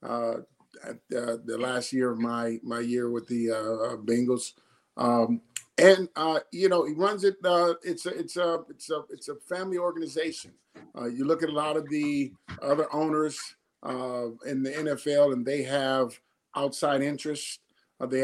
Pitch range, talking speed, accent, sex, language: 135-180 Hz, 180 wpm, American, male, English